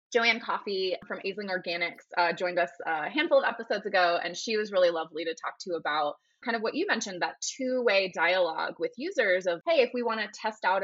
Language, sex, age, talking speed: English, female, 20-39, 220 wpm